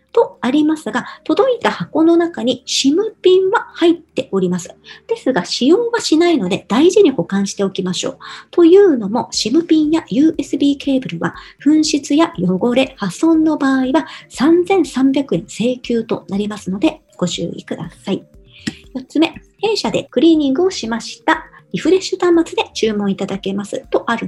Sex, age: male, 50-69